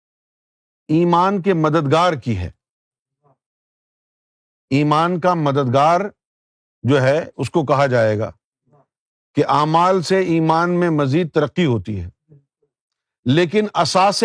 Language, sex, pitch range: Urdu, male, 130-175 Hz